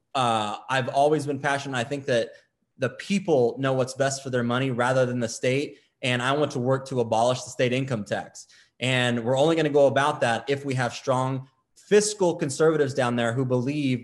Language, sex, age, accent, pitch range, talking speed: English, male, 20-39, American, 125-150 Hz, 210 wpm